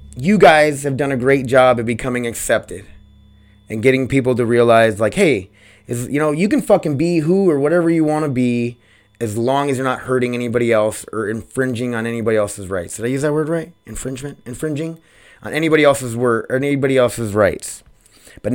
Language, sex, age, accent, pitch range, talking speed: English, male, 20-39, American, 110-140 Hz, 200 wpm